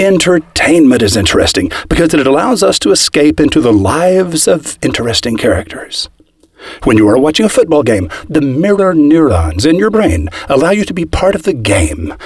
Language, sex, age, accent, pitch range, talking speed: English, male, 50-69, American, 145-205 Hz, 175 wpm